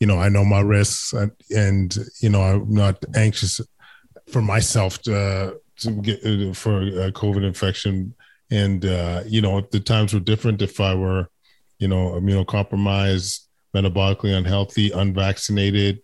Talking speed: 155 wpm